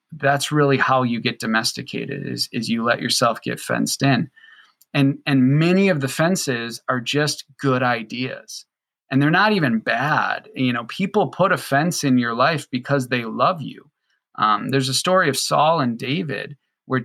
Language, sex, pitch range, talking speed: English, male, 130-155 Hz, 180 wpm